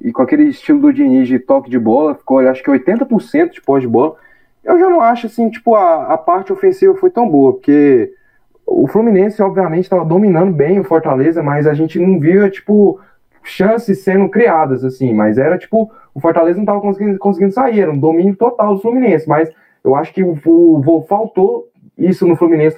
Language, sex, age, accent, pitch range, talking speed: Portuguese, male, 20-39, Brazilian, 140-200 Hz, 200 wpm